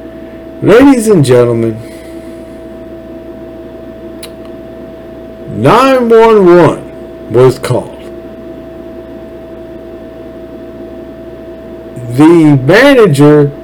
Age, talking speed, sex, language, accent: 60-79, 45 wpm, male, English, American